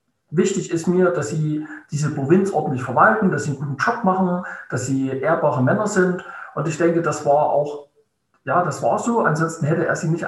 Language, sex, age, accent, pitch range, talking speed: German, male, 50-69, German, 140-190 Hz, 185 wpm